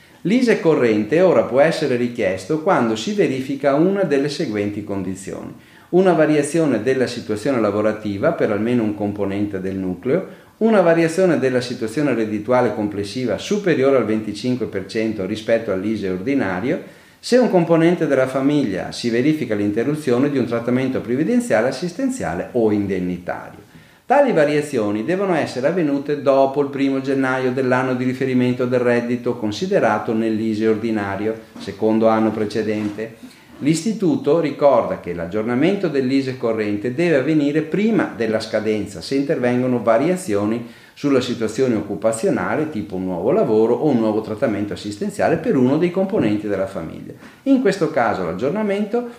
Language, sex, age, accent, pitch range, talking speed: Italian, male, 40-59, native, 110-150 Hz, 130 wpm